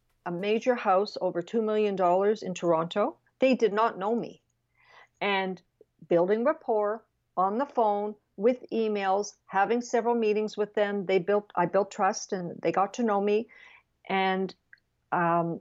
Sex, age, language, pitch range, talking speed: female, 50-69, English, 185-225 Hz, 155 wpm